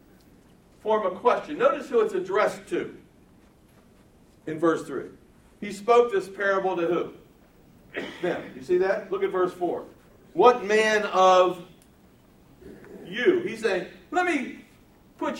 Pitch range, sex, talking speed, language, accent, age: 220-335 Hz, male, 135 wpm, English, American, 60-79